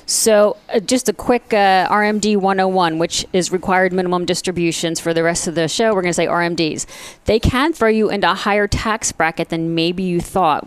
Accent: American